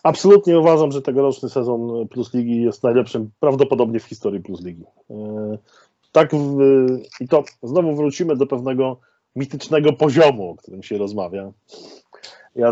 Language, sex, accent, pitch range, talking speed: Polish, male, native, 115-140 Hz, 125 wpm